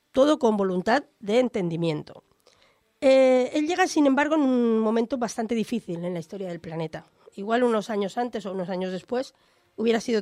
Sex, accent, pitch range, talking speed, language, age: female, Spanish, 195-255 Hz, 175 wpm, Spanish, 40-59